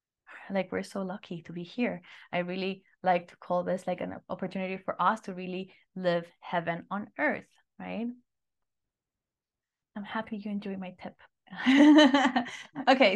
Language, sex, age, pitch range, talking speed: English, female, 20-39, 185-245 Hz, 145 wpm